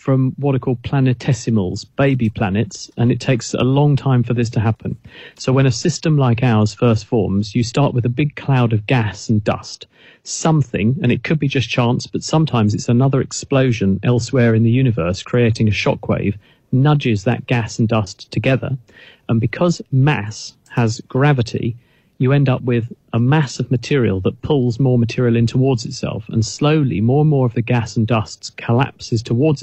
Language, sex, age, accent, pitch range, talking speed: English, male, 40-59, British, 115-135 Hz, 185 wpm